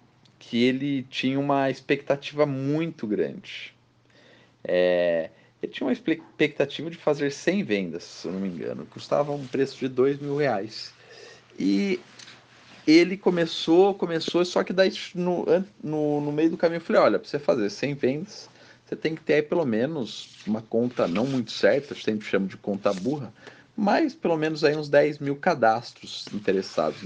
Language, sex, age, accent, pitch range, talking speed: Portuguese, male, 40-59, Brazilian, 115-155 Hz, 170 wpm